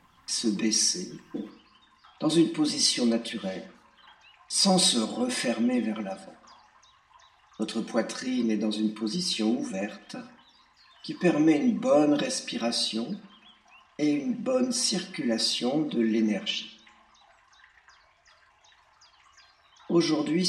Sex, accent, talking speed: male, French, 90 wpm